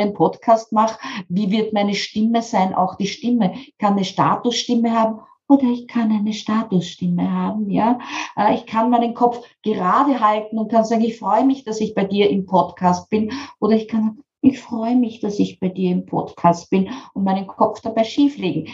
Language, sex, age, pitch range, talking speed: German, female, 50-69, 195-255 Hz, 190 wpm